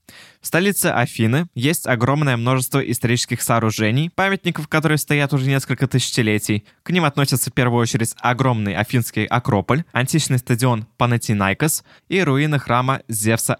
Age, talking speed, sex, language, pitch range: 20-39, 130 wpm, male, Russian, 115-145 Hz